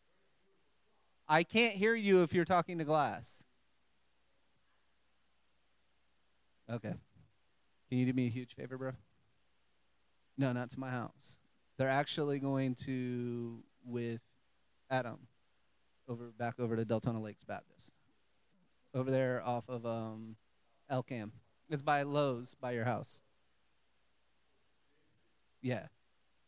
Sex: male